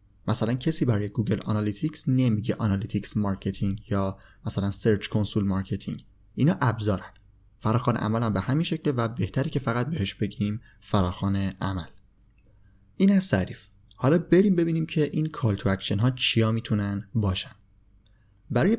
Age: 30-49